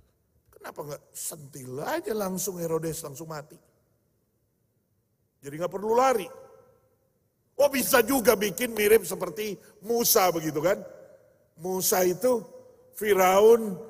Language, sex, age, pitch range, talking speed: Indonesian, male, 50-69, 165-245 Hz, 100 wpm